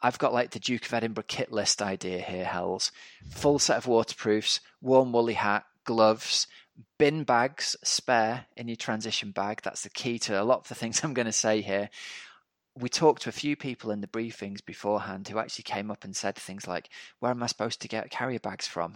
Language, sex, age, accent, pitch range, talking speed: English, male, 20-39, British, 100-120 Hz, 215 wpm